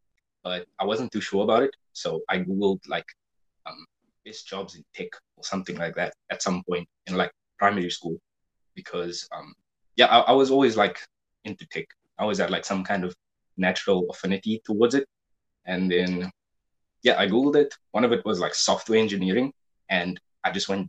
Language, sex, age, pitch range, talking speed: English, male, 20-39, 90-105 Hz, 185 wpm